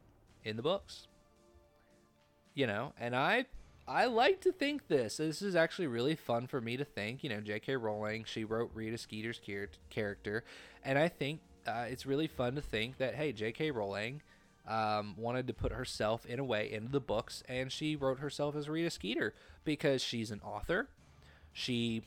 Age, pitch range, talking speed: 20-39, 105-140 Hz, 180 wpm